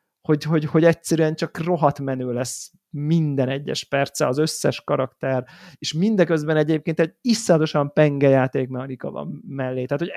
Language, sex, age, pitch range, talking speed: Hungarian, male, 30-49, 140-170 Hz, 150 wpm